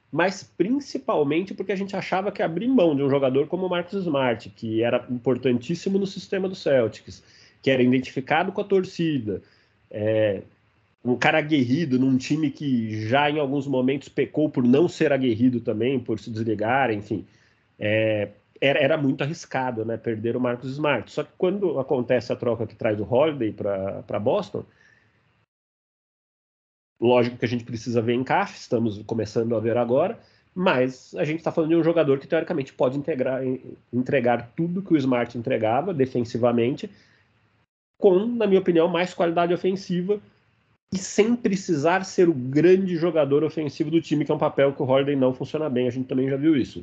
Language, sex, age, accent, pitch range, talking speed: Portuguese, male, 30-49, Brazilian, 120-175 Hz, 175 wpm